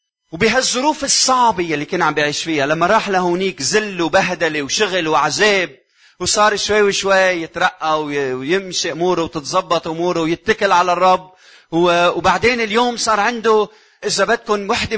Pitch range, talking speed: 145-210 Hz, 130 wpm